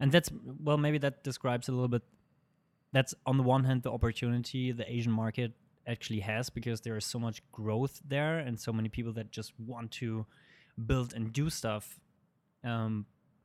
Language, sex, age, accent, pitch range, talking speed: English, male, 20-39, German, 115-140 Hz, 185 wpm